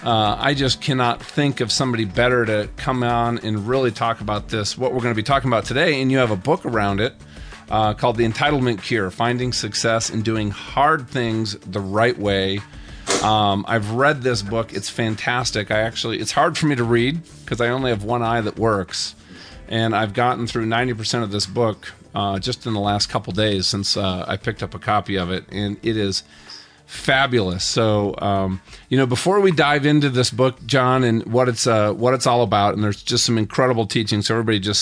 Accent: American